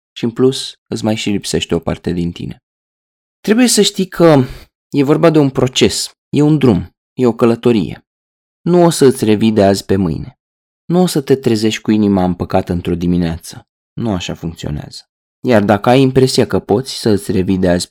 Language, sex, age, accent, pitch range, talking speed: Romanian, male, 20-39, native, 95-135 Hz, 200 wpm